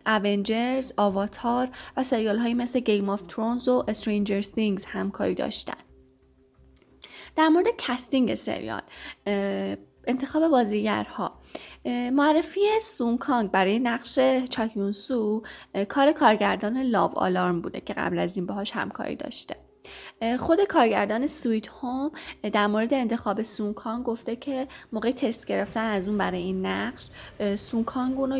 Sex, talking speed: female, 125 wpm